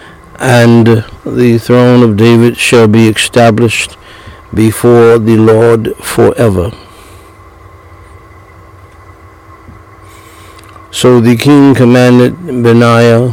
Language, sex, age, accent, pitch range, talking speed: English, male, 60-79, American, 105-120 Hz, 75 wpm